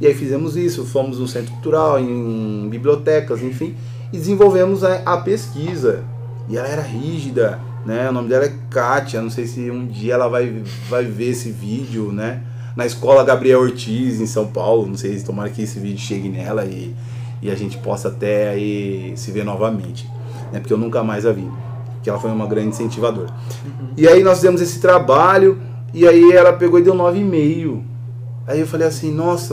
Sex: male